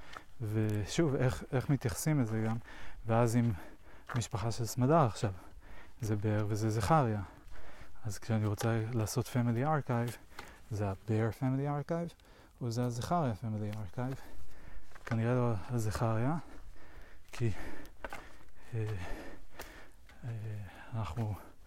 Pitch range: 105-120 Hz